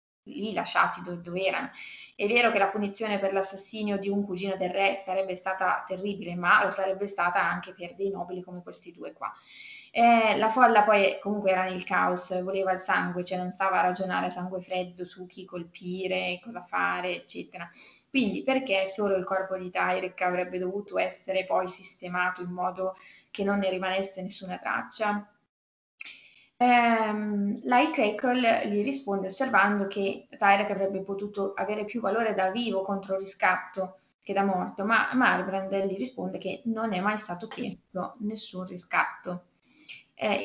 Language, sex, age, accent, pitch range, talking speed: Italian, female, 20-39, native, 185-215 Hz, 160 wpm